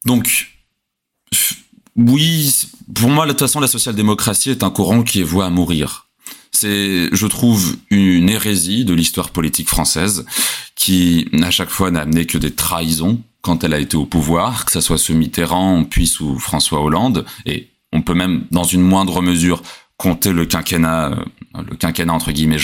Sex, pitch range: male, 85-115 Hz